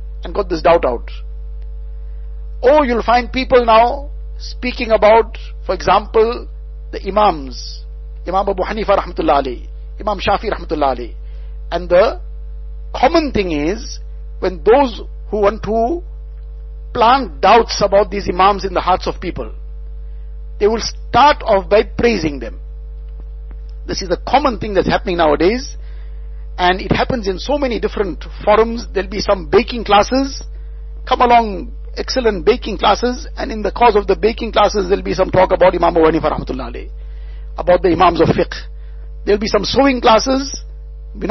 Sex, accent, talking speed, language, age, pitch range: male, Indian, 150 wpm, English, 60-79, 145-225 Hz